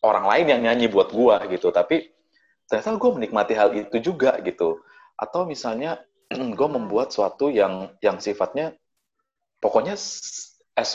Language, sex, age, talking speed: Indonesian, male, 30-49, 135 wpm